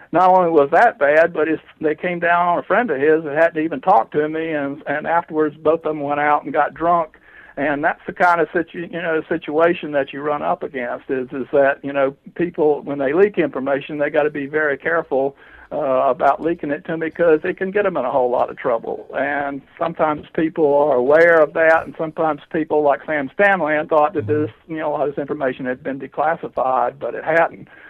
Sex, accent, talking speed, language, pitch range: male, American, 230 wpm, English, 140-160 Hz